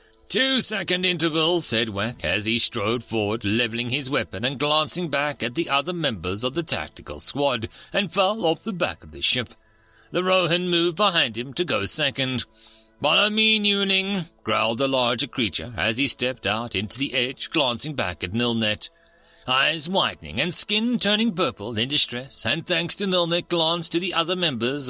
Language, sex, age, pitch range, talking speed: English, male, 40-59, 115-175 Hz, 180 wpm